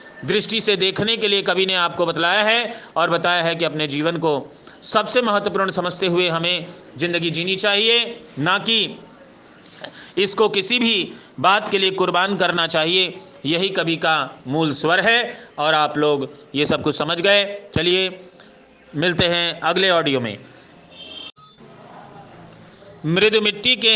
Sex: male